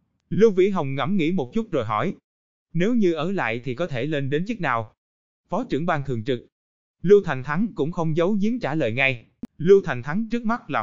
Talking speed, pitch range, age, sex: 225 wpm, 130-180 Hz, 20-39, male